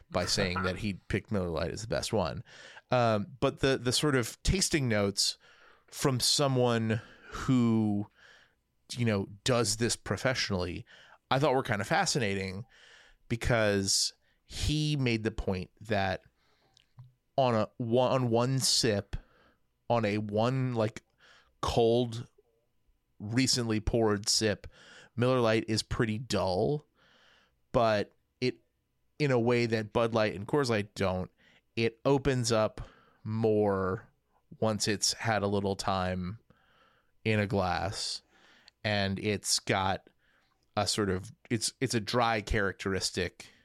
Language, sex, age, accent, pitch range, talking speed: English, male, 30-49, American, 100-125 Hz, 125 wpm